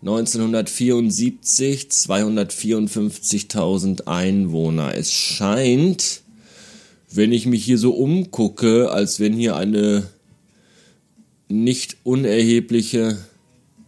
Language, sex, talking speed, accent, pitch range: German, male, 75 wpm, German, 95-150 Hz